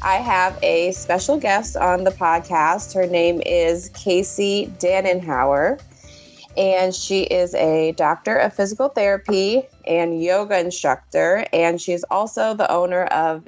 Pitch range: 165-200 Hz